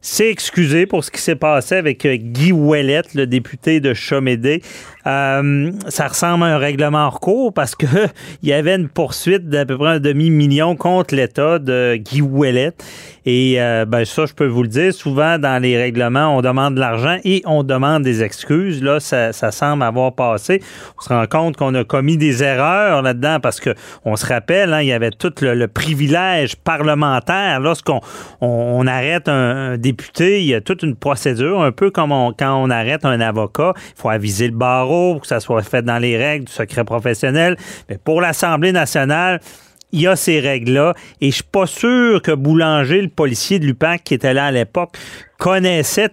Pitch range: 130-165 Hz